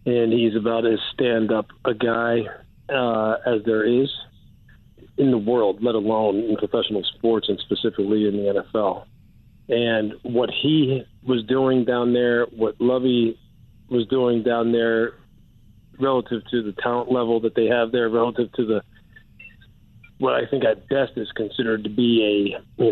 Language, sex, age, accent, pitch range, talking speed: English, male, 40-59, American, 110-125 Hz, 155 wpm